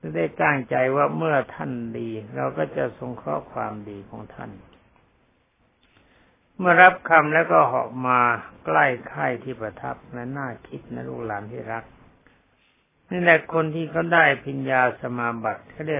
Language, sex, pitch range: Thai, male, 110-140 Hz